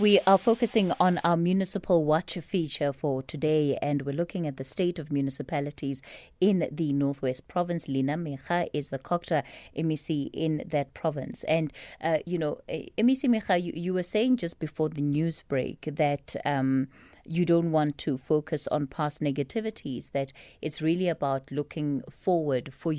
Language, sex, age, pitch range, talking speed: English, female, 30-49, 150-195 Hz, 165 wpm